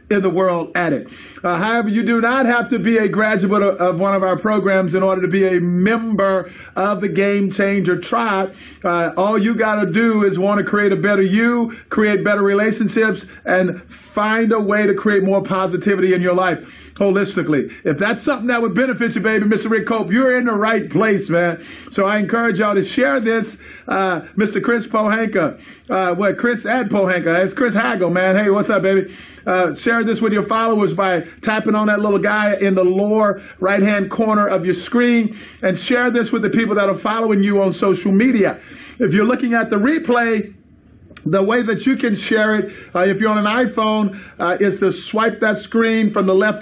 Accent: American